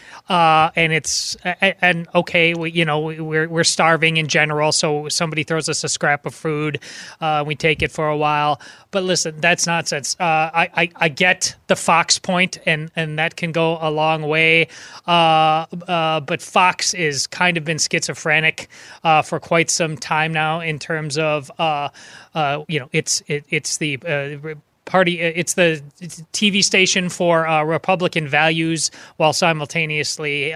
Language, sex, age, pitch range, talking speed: English, male, 30-49, 155-180 Hz, 170 wpm